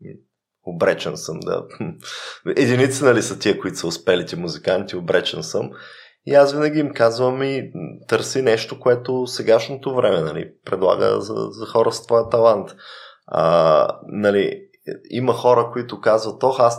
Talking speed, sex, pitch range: 145 wpm, male, 100-135 Hz